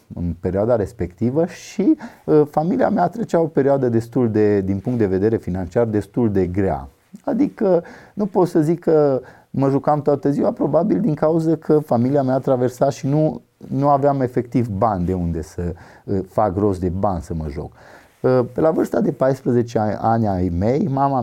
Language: Romanian